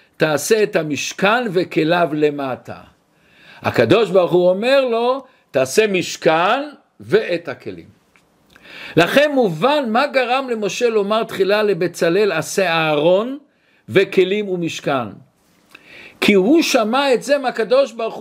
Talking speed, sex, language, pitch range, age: 110 wpm, male, Hebrew, 190-250 Hz, 60-79